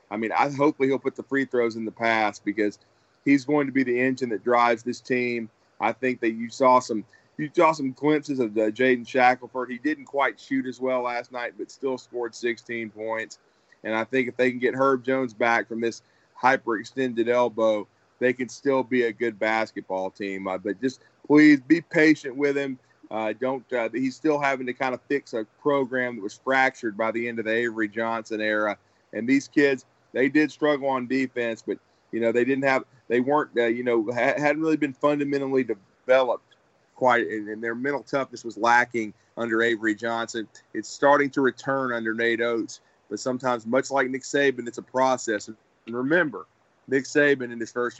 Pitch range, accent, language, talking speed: 115-135 Hz, American, English, 200 wpm